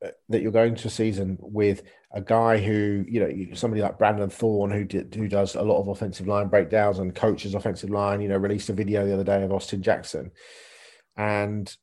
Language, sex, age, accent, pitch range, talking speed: English, male, 40-59, British, 100-120 Hz, 215 wpm